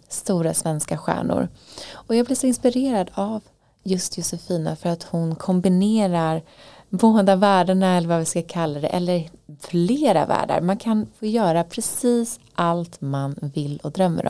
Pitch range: 160-205 Hz